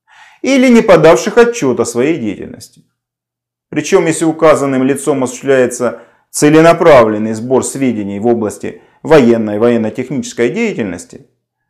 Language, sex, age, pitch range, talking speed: Russian, male, 30-49, 120-190 Hz, 110 wpm